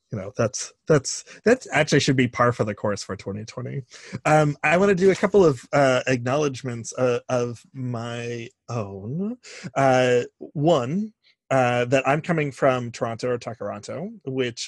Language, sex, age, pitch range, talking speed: English, male, 30-49, 110-135 Hz, 160 wpm